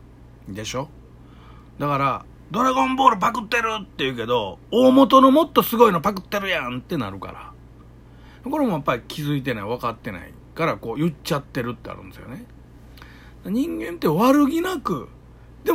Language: Japanese